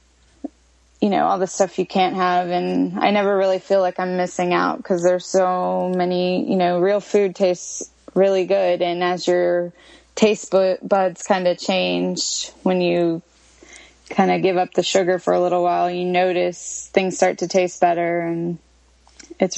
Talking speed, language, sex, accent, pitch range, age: 175 wpm, English, female, American, 175-190 Hz, 20-39